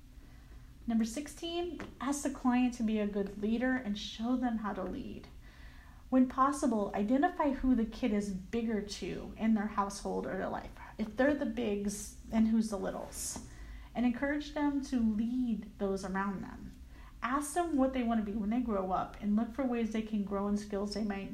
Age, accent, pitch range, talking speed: 30-49, American, 205-250 Hz, 190 wpm